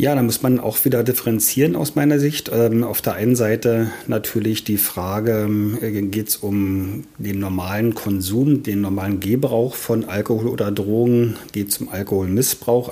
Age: 40-59